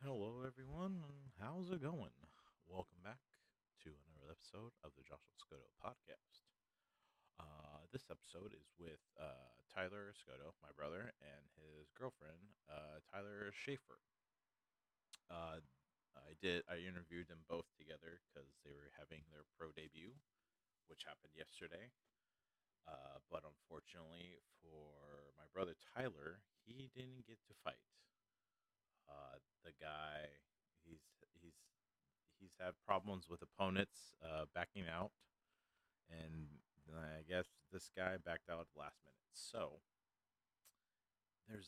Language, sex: English, male